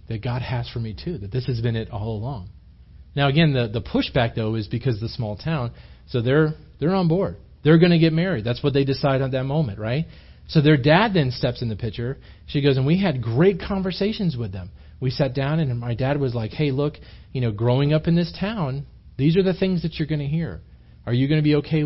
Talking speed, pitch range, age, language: 255 wpm, 115-155 Hz, 40-59, English